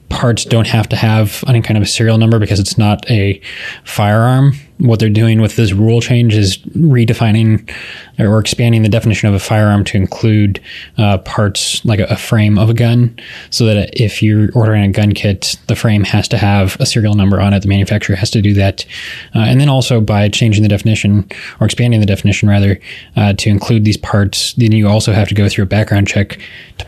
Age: 20-39